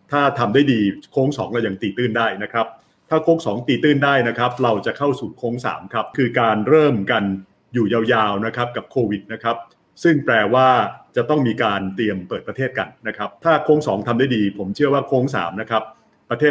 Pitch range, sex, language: 110-135 Hz, male, Thai